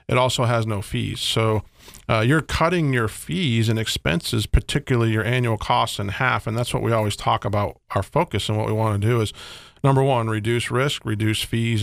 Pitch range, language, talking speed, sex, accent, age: 110-130 Hz, English, 210 wpm, male, American, 40-59